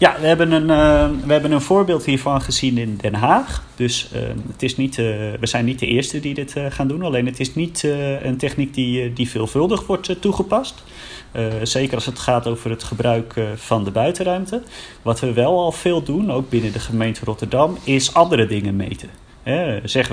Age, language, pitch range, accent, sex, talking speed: 30-49, Dutch, 115-130 Hz, Dutch, male, 195 wpm